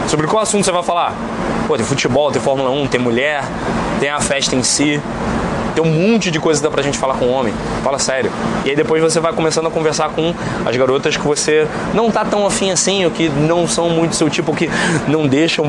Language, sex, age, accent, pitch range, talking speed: Portuguese, male, 20-39, Brazilian, 145-180 Hz, 240 wpm